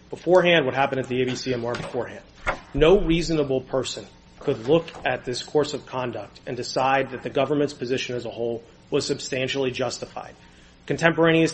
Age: 30-49